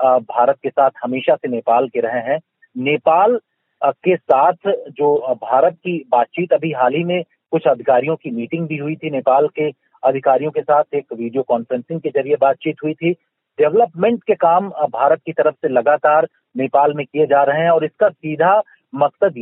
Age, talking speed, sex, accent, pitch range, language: 40-59, 180 wpm, male, native, 140-175 Hz, Hindi